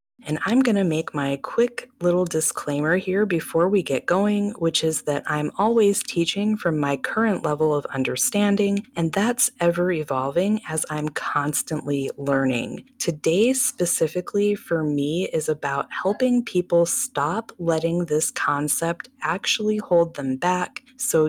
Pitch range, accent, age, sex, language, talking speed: 155-210 Hz, American, 30-49, female, English, 140 wpm